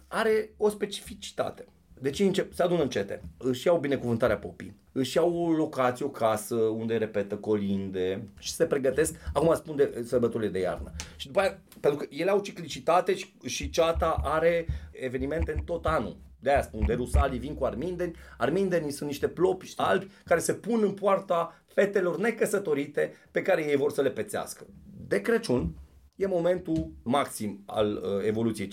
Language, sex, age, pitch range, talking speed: Romanian, male, 30-49, 120-185 Hz, 165 wpm